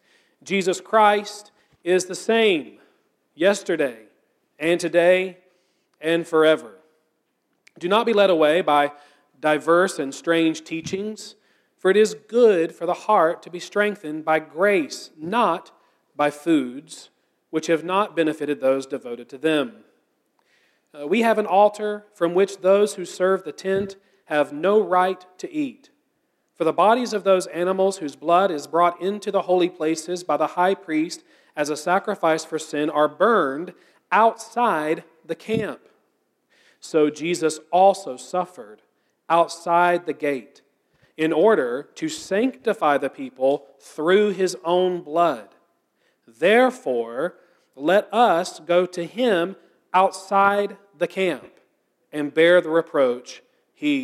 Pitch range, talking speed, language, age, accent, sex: 160-205 Hz, 130 wpm, English, 40-59, American, male